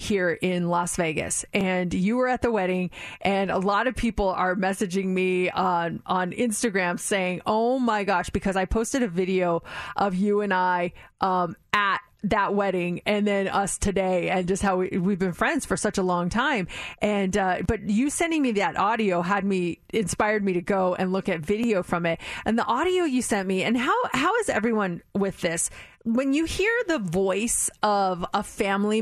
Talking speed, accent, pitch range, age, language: 195 wpm, American, 185-225 Hz, 30-49, English